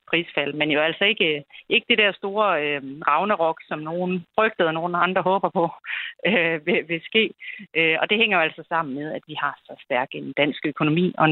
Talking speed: 210 wpm